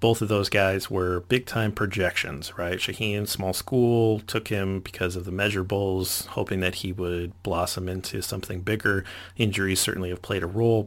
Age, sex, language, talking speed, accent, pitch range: 30-49, male, English, 170 wpm, American, 90-105 Hz